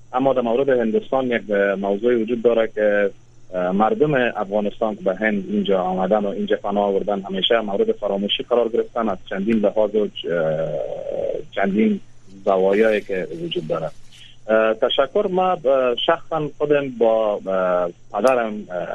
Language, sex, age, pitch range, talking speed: Persian, male, 30-49, 100-125 Hz, 130 wpm